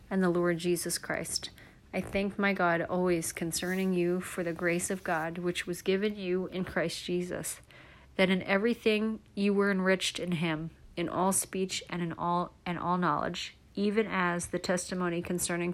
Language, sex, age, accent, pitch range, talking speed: English, female, 30-49, American, 170-190 Hz, 175 wpm